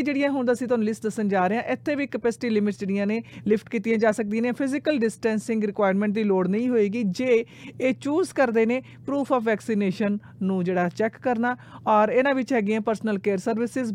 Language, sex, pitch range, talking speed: Punjabi, female, 205-240 Hz, 200 wpm